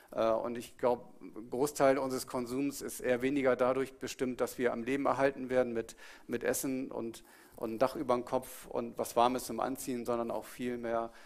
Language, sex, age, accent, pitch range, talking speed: German, male, 50-69, German, 115-130 Hz, 190 wpm